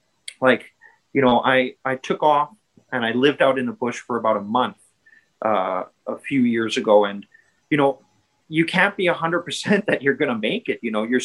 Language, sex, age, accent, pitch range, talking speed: English, male, 30-49, American, 130-180 Hz, 210 wpm